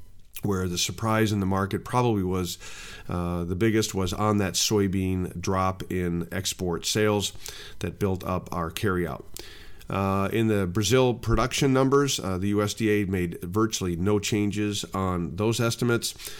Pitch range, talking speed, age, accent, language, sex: 90-110 Hz, 145 wpm, 40-59, American, English, male